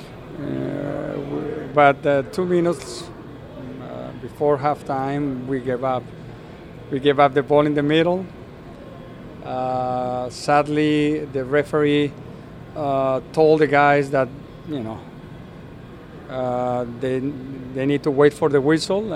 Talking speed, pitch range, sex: 125 wpm, 135-160 Hz, male